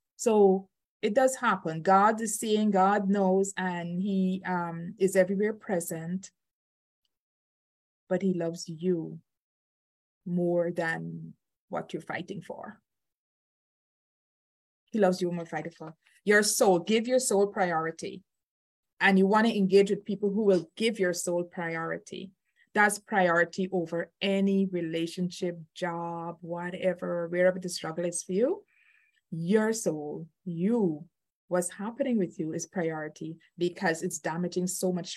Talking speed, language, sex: 130 wpm, English, female